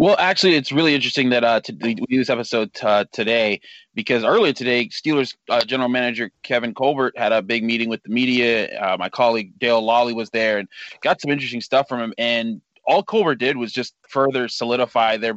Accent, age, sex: American, 20-39, male